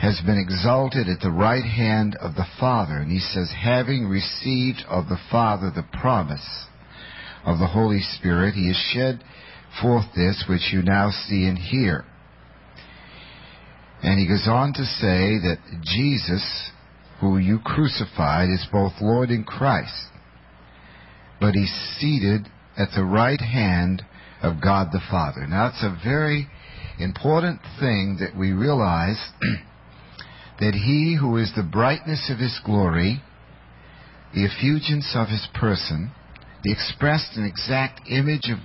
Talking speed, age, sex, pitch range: 140 wpm, 50-69, male, 90-130 Hz